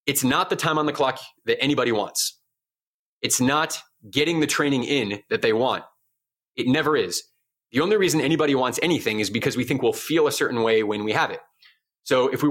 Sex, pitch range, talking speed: male, 125-180 Hz, 210 wpm